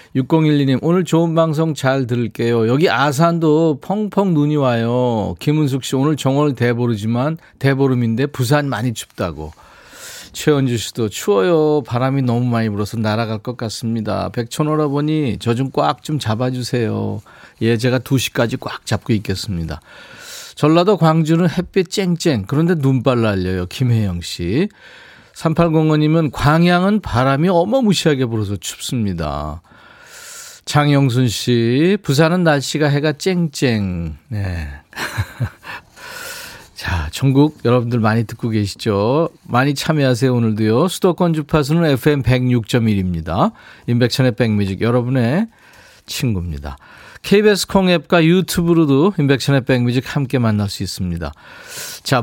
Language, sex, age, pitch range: Korean, male, 40-59, 115-160 Hz